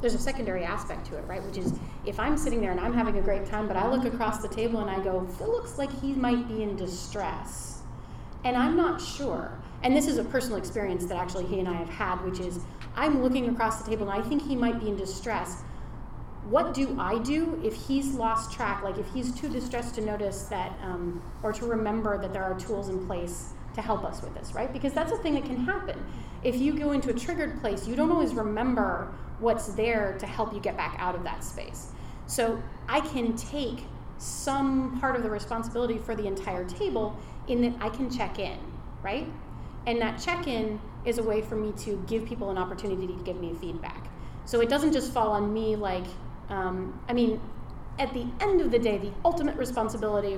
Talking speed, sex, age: 220 wpm, female, 30-49